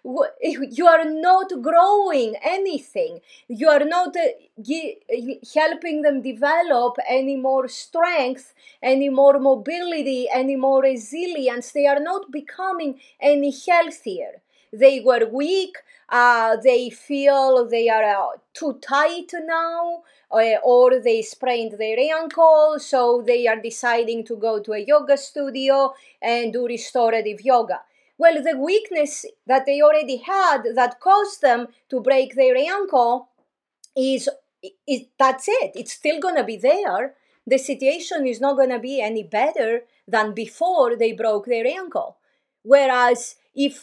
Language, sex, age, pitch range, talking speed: English, female, 30-49, 240-310 Hz, 135 wpm